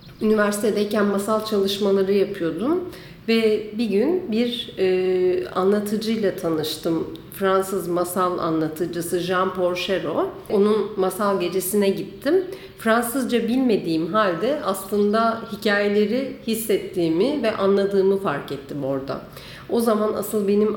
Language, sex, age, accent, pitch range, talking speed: Turkish, female, 50-69, native, 175-220 Hz, 100 wpm